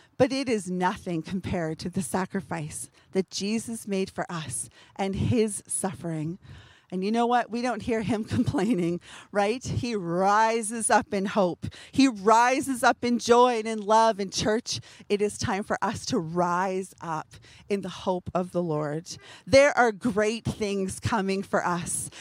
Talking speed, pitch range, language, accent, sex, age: 170 wpm, 185-250 Hz, English, American, female, 40-59